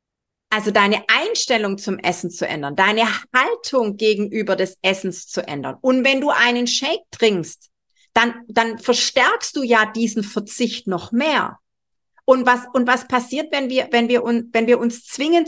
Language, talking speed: German, 145 wpm